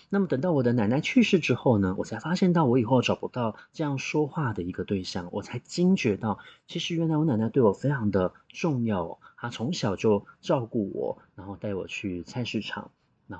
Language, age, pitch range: Chinese, 30-49, 105-160 Hz